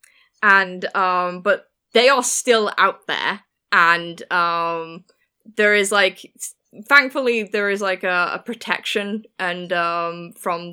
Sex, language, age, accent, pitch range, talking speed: female, English, 10-29, British, 170-210 Hz, 130 wpm